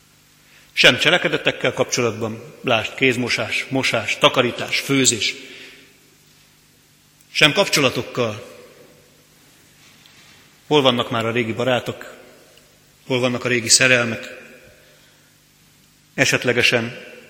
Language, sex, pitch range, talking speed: Hungarian, male, 120-140 Hz, 75 wpm